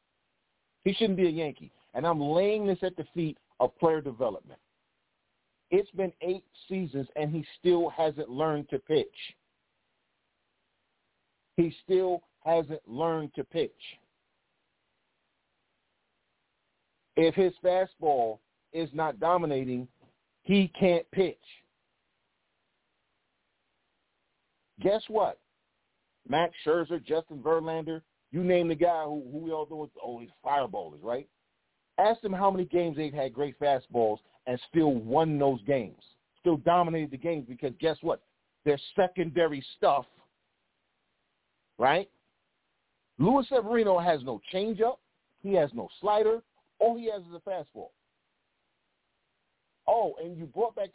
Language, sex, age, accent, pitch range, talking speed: English, male, 50-69, American, 150-195 Hz, 125 wpm